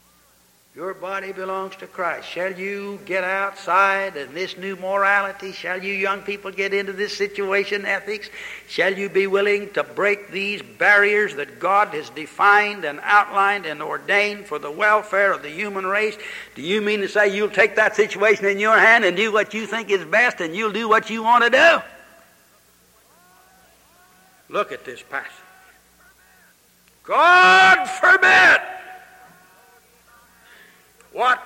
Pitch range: 200-240 Hz